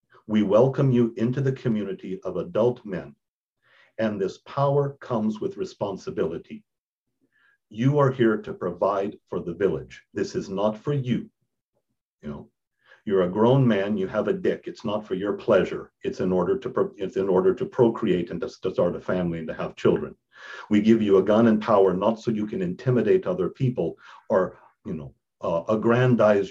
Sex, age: male, 50-69